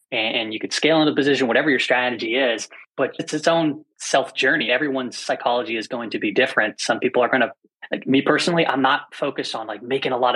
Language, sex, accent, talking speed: English, male, American, 220 wpm